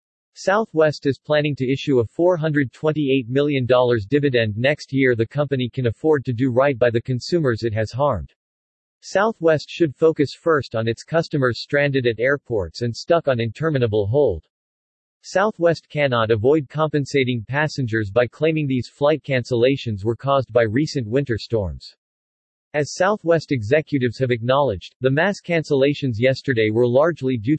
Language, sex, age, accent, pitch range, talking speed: English, male, 40-59, American, 120-150 Hz, 145 wpm